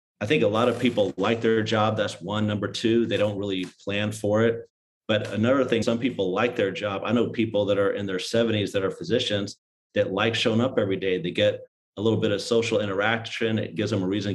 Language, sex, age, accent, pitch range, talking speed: English, male, 40-59, American, 100-115 Hz, 240 wpm